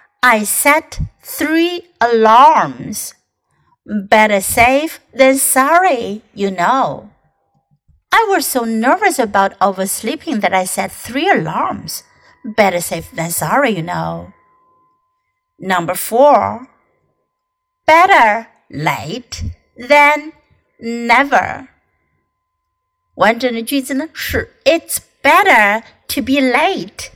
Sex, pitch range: female, 210-325 Hz